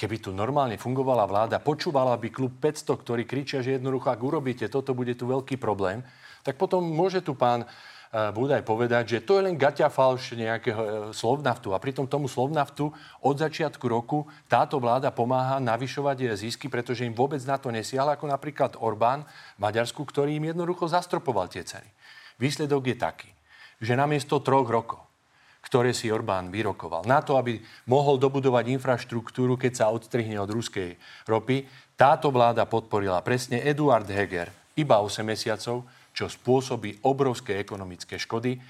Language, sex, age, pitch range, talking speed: Slovak, male, 40-59, 110-140 Hz, 165 wpm